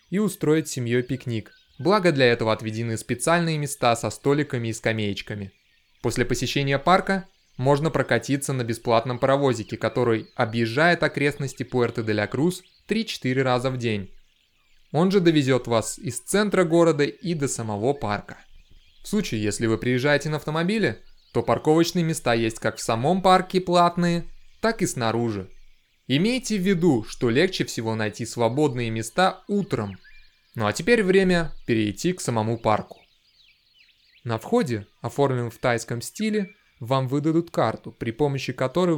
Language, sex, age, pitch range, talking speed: Russian, male, 20-39, 115-165 Hz, 140 wpm